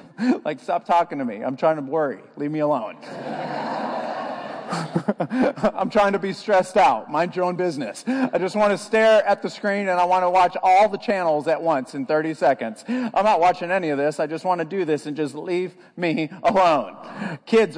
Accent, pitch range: American, 155-210 Hz